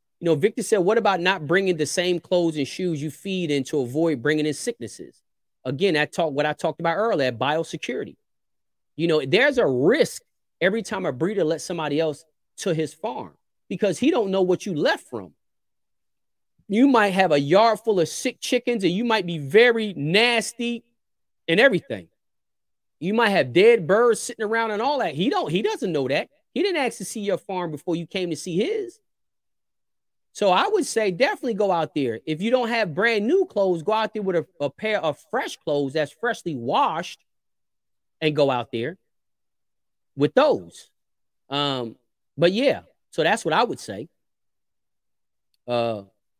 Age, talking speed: 30-49, 185 wpm